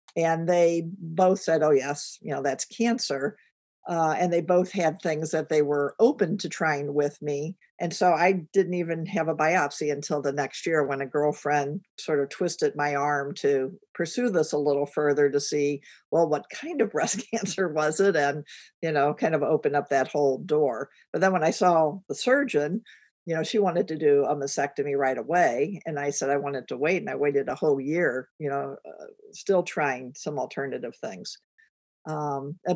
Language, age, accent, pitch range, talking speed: English, 50-69, American, 145-180 Hz, 200 wpm